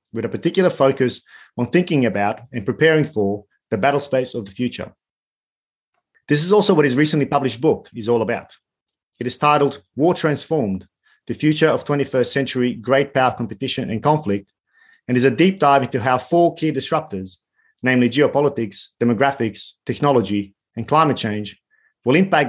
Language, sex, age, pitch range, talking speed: English, male, 30-49, 115-150 Hz, 165 wpm